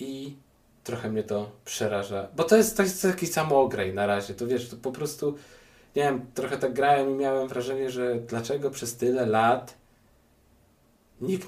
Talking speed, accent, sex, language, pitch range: 175 wpm, native, male, Polish, 120-160 Hz